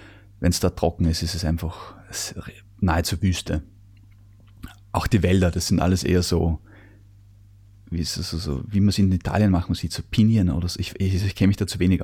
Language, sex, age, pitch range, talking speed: German, male, 20-39, 90-105 Hz, 210 wpm